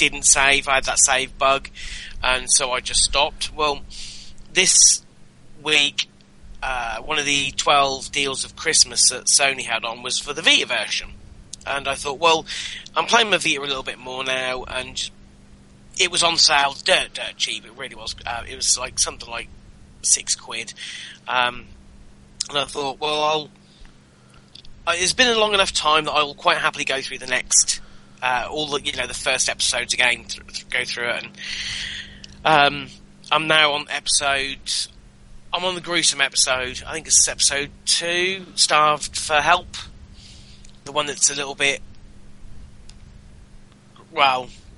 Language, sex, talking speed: English, male, 160 wpm